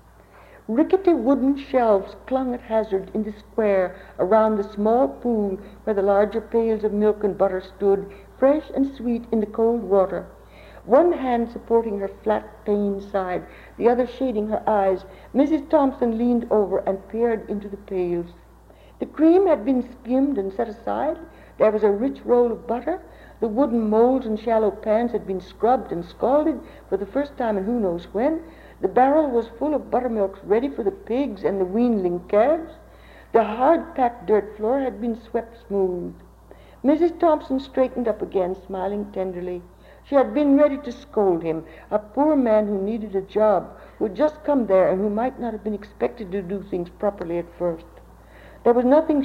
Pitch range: 200-255 Hz